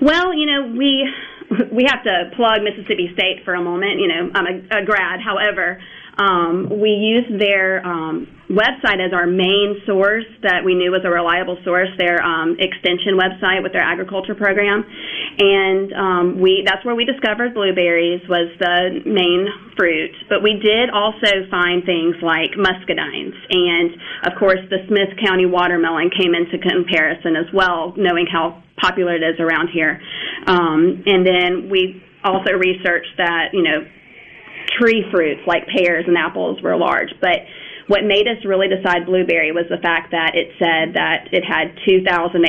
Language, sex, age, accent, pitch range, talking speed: English, female, 30-49, American, 175-200 Hz, 165 wpm